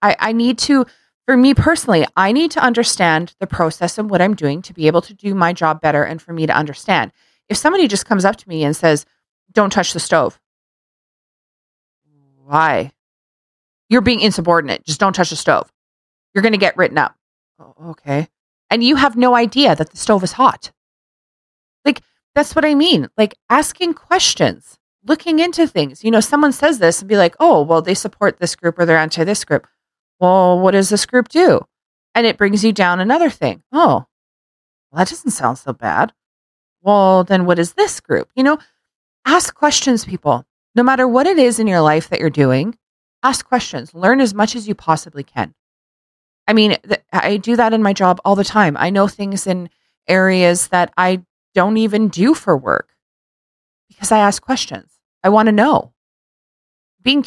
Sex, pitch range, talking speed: female, 170-245 Hz, 190 wpm